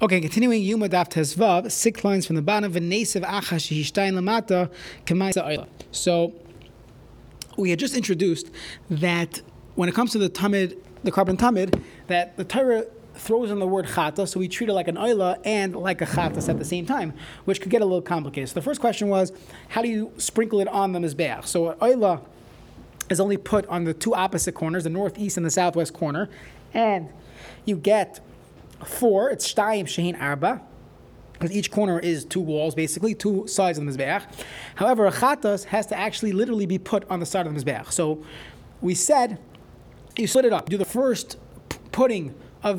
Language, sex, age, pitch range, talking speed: English, male, 20-39, 165-210 Hz, 185 wpm